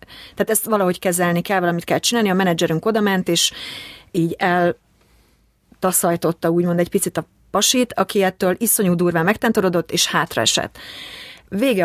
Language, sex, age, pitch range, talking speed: Hungarian, female, 30-49, 170-205 Hz, 140 wpm